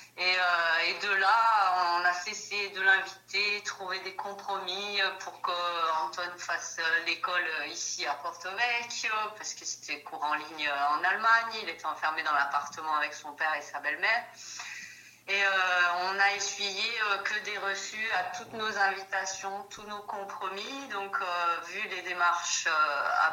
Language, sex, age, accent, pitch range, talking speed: French, female, 40-59, French, 160-195 Hz, 145 wpm